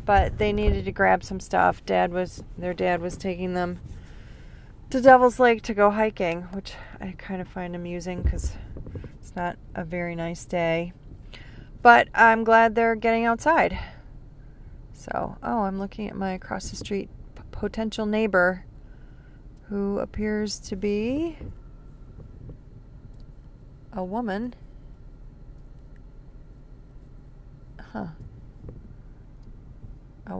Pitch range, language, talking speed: 130-195 Hz, English, 115 wpm